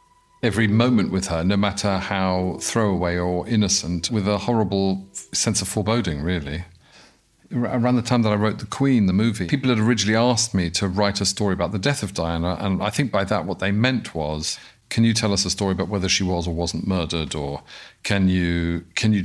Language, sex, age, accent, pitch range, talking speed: English, male, 50-69, British, 95-115 Hz, 210 wpm